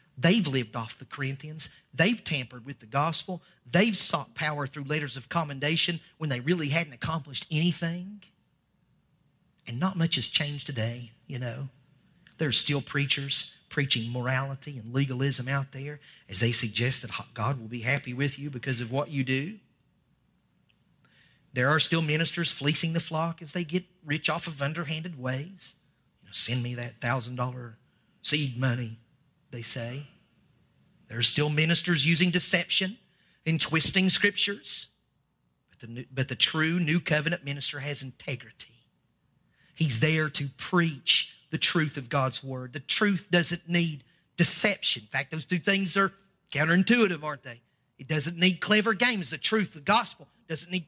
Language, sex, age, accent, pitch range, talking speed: English, male, 40-59, American, 135-180 Hz, 155 wpm